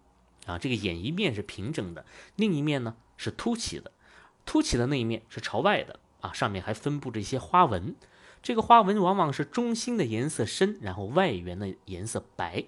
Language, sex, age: Chinese, male, 30-49